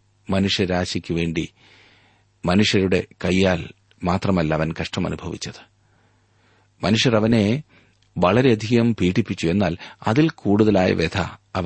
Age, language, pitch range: 40-59, Malayalam, 90-110 Hz